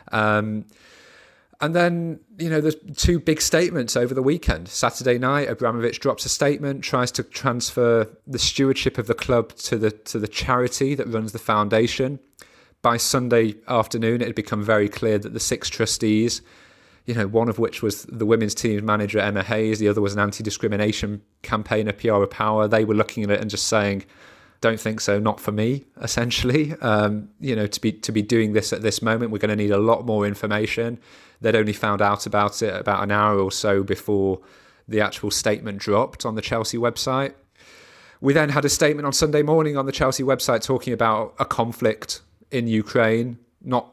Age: 30-49